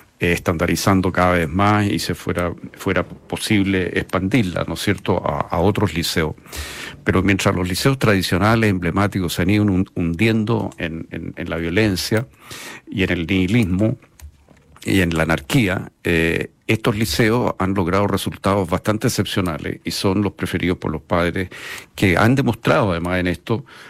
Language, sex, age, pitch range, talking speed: Spanish, male, 50-69, 90-110 Hz, 160 wpm